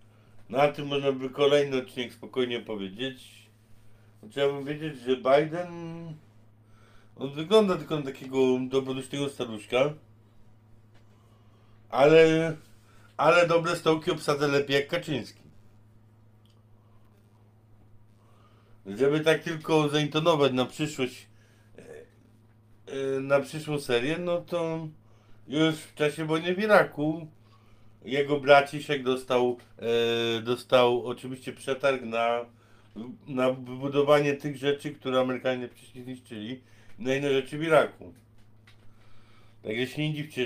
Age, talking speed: 50-69, 105 wpm